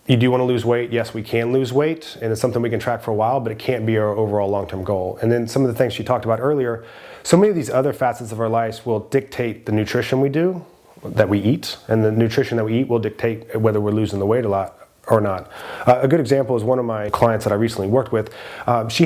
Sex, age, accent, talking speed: male, 30-49, American, 280 wpm